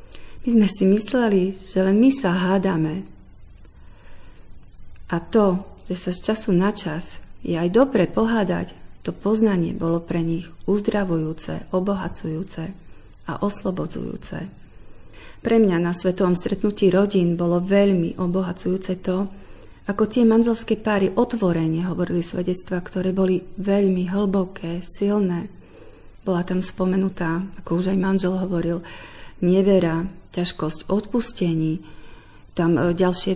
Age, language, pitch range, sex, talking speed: 40-59, Slovak, 170-200 Hz, female, 115 wpm